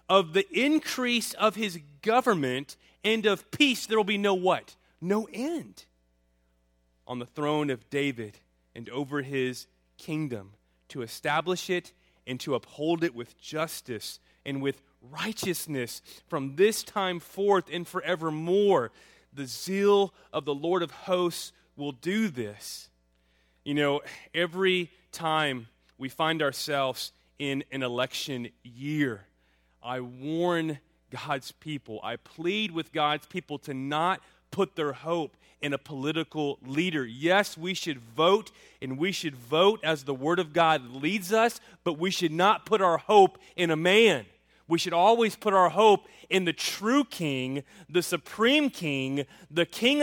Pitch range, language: 135-200 Hz, English